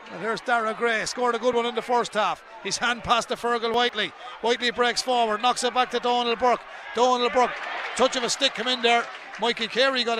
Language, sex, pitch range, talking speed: English, male, 225-245 Hz, 230 wpm